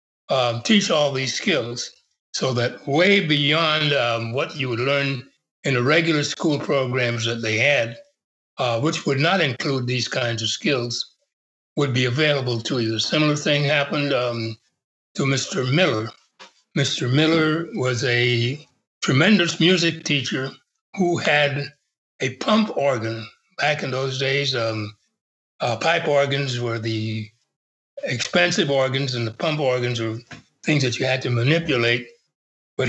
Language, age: English, 60-79